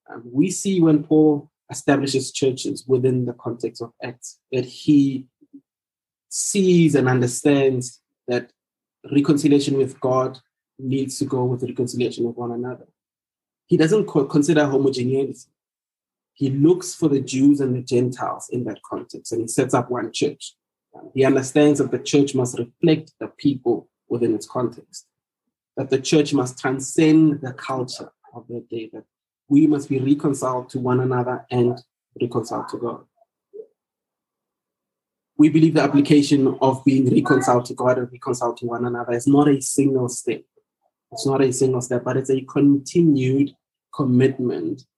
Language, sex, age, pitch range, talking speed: English, male, 20-39, 125-145 Hz, 150 wpm